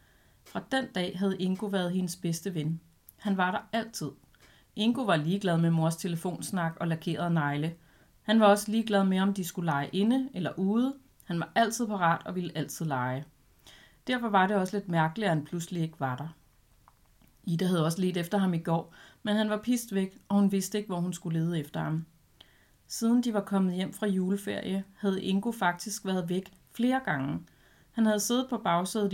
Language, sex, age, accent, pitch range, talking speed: Danish, female, 30-49, native, 165-205 Hz, 200 wpm